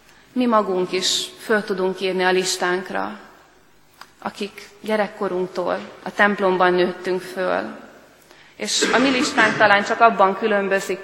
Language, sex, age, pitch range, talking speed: Hungarian, female, 30-49, 185-205 Hz, 120 wpm